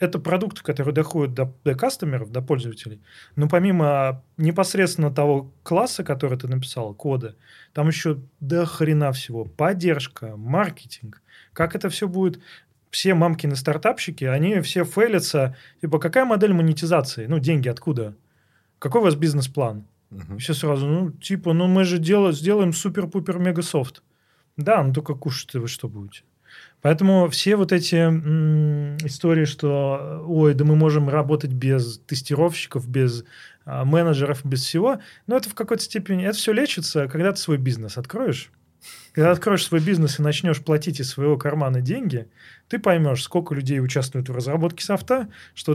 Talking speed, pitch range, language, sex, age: 150 wpm, 135-175 Hz, Russian, male, 20-39